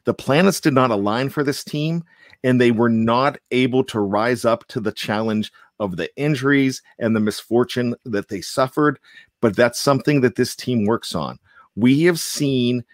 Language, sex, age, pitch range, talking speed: English, male, 40-59, 105-130 Hz, 180 wpm